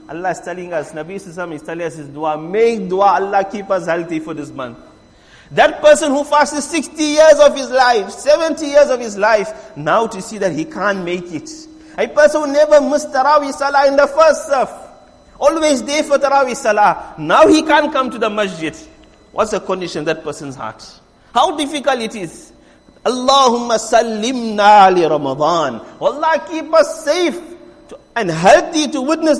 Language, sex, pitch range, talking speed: English, male, 210-300 Hz, 180 wpm